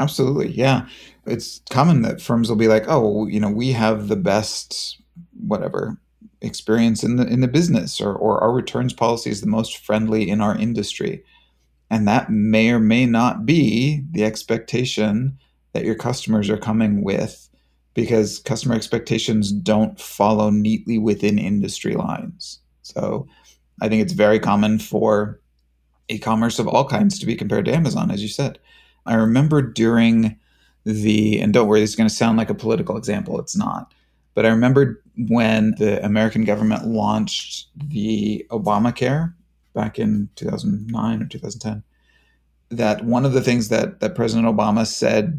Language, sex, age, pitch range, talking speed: English, male, 30-49, 105-120 Hz, 160 wpm